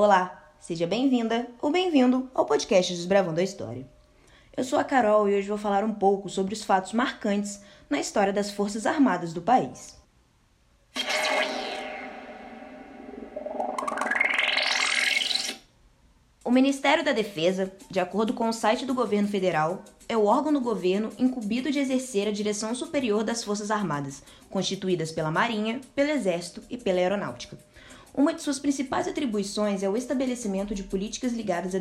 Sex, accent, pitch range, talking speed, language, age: female, Brazilian, 190-255 Hz, 145 wpm, Portuguese, 20-39